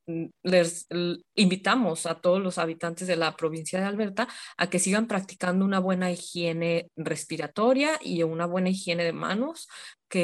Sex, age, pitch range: female, 20-39, 170-195 Hz